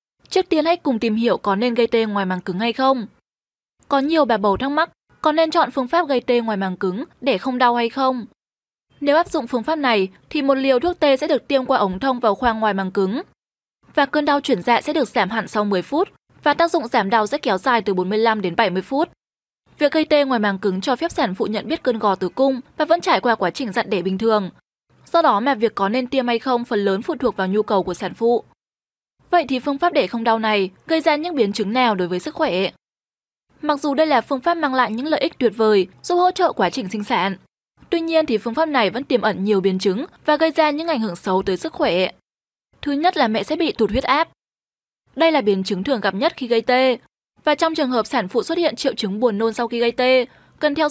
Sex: female